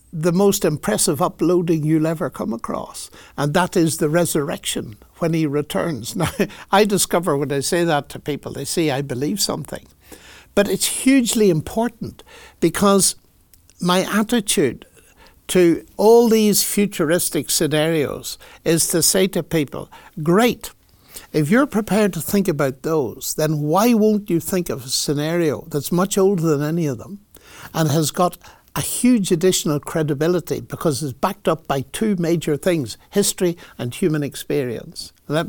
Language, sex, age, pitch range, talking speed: English, male, 60-79, 145-190 Hz, 150 wpm